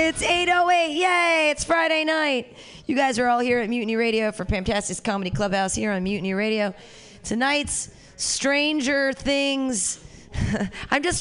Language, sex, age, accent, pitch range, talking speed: English, female, 30-49, American, 205-285 Hz, 145 wpm